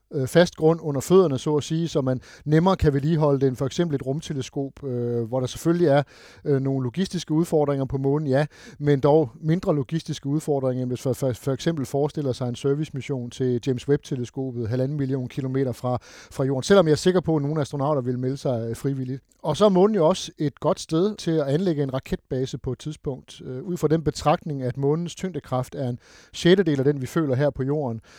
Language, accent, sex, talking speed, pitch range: Danish, native, male, 215 wpm, 130-160 Hz